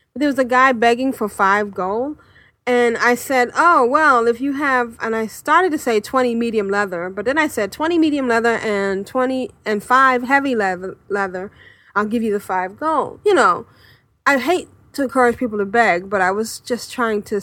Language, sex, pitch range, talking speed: English, female, 200-270 Hz, 205 wpm